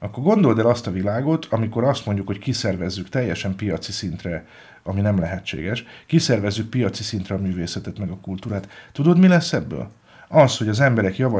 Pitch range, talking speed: 95-115 Hz, 180 wpm